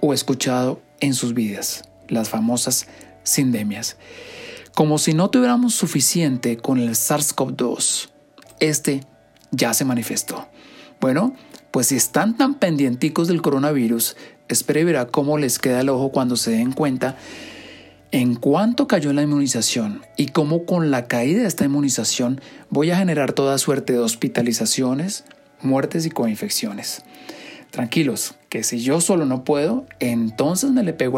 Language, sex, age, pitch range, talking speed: Spanish, male, 40-59, 125-175 Hz, 140 wpm